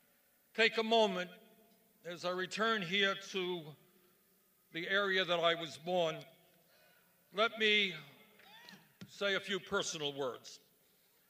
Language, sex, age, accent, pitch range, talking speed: English, male, 60-79, American, 180-215 Hz, 110 wpm